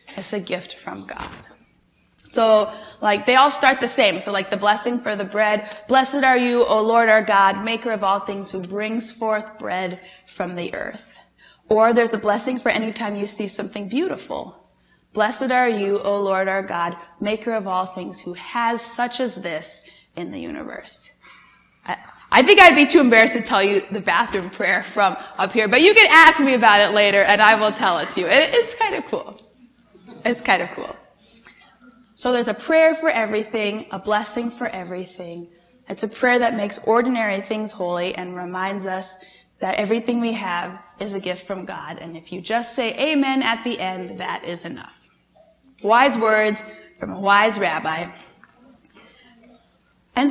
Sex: female